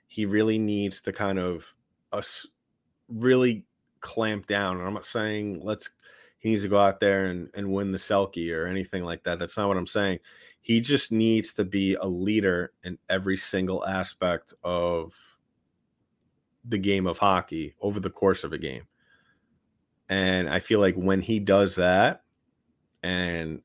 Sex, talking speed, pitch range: male, 170 wpm, 85-100 Hz